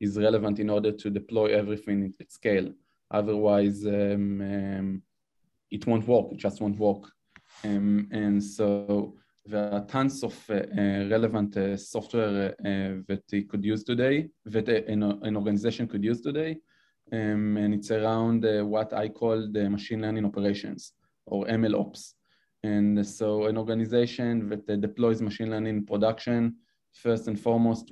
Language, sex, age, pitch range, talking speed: English, male, 20-39, 100-115 Hz, 155 wpm